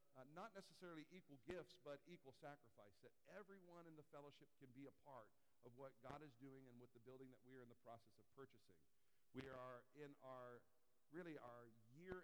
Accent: American